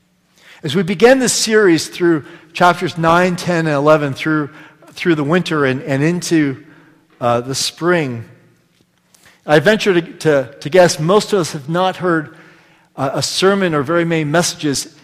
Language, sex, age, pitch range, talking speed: English, male, 40-59, 135-180 Hz, 160 wpm